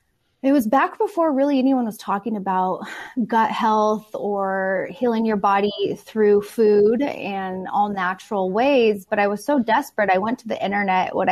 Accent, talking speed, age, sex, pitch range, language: American, 170 wpm, 20-39, female, 195-240 Hz, English